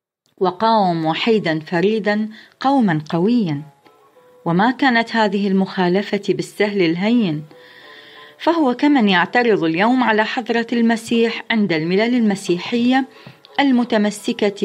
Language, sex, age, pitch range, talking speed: Arabic, female, 30-49, 180-235 Hz, 90 wpm